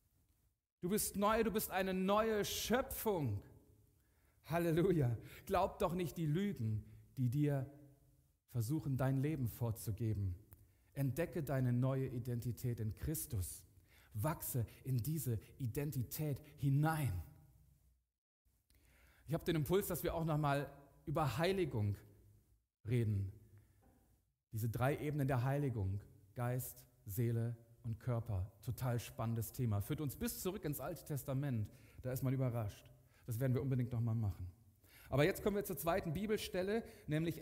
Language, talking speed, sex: German, 125 wpm, male